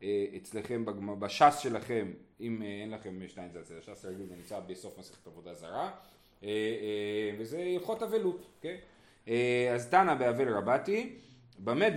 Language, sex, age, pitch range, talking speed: Hebrew, male, 30-49, 120-185 Hz, 140 wpm